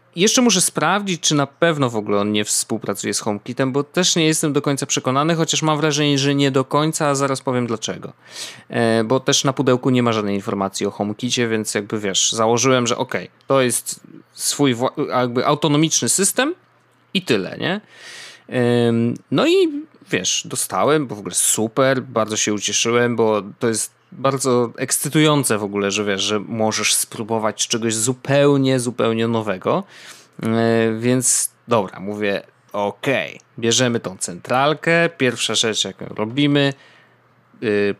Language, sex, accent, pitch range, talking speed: Polish, male, native, 115-145 Hz, 155 wpm